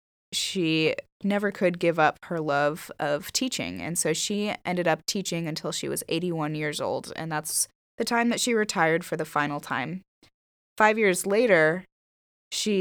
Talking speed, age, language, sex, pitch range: 170 wpm, 20-39, English, female, 155-195 Hz